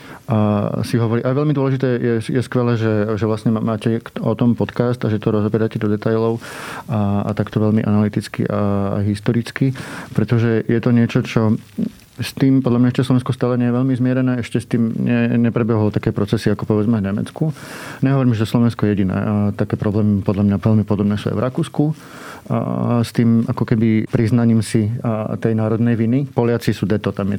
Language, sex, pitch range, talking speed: Slovak, male, 105-120 Hz, 195 wpm